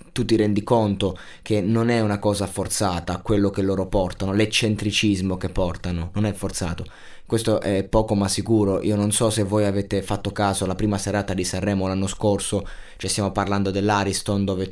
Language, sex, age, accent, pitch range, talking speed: Italian, male, 20-39, native, 95-110 Hz, 185 wpm